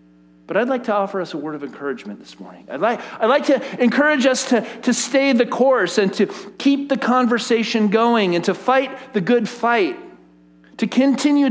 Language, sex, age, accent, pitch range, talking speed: English, male, 40-59, American, 190-265 Hz, 195 wpm